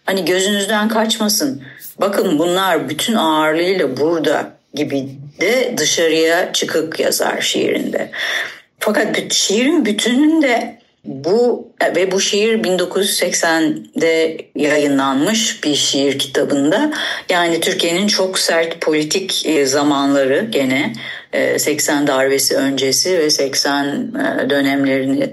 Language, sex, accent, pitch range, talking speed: Turkish, female, native, 140-215 Hz, 90 wpm